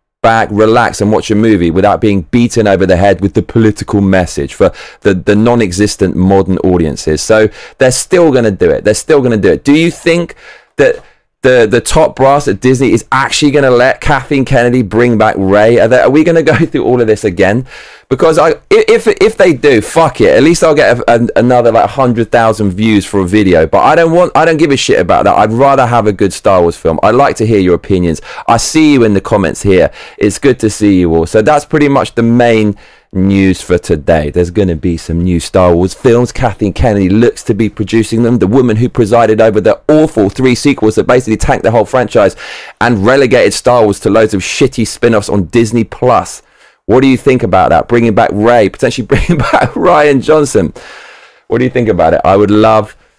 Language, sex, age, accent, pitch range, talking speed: English, male, 20-39, British, 100-130 Hz, 225 wpm